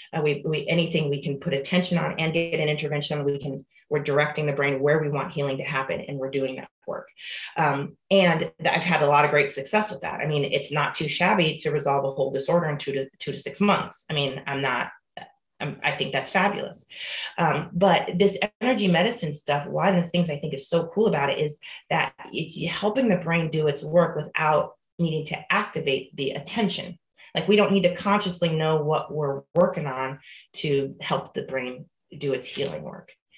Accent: American